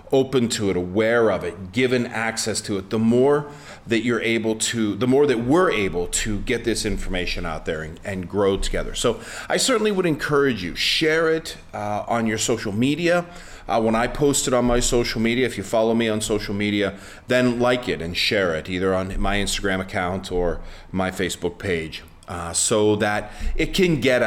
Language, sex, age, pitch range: English, male, 30-49, 95-125 Hz